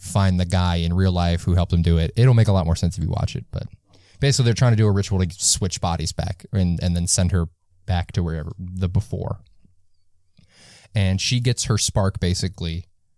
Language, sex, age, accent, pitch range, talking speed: English, male, 20-39, American, 90-105 Hz, 225 wpm